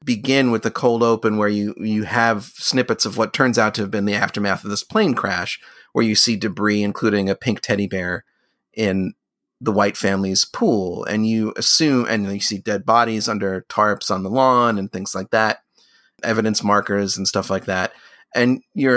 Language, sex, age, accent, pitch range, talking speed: English, male, 30-49, American, 100-115 Hz, 195 wpm